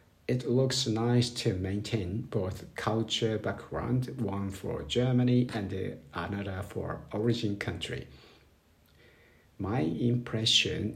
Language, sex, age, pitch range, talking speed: English, male, 50-69, 105-125 Hz, 100 wpm